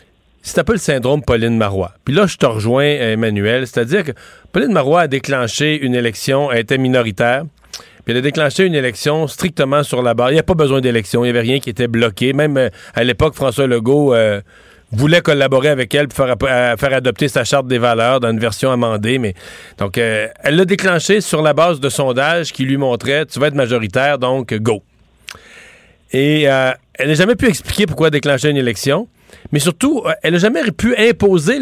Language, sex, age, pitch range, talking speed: French, male, 40-59, 130-185 Hz, 205 wpm